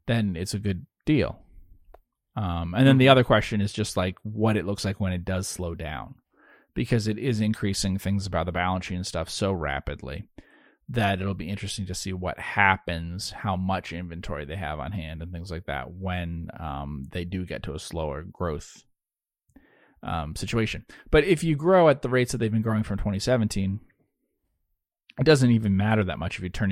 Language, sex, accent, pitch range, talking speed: English, male, American, 85-105 Hz, 200 wpm